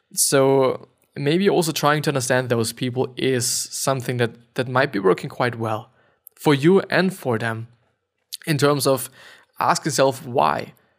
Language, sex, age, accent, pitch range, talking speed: English, male, 20-39, German, 125-155 Hz, 155 wpm